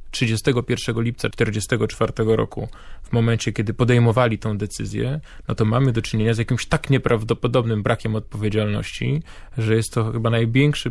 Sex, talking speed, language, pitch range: male, 145 wpm, Polish, 110-125 Hz